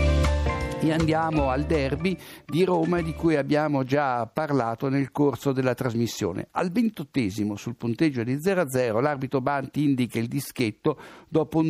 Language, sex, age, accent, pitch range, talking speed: Italian, male, 60-79, native, 115-155 Hz, 145 wpm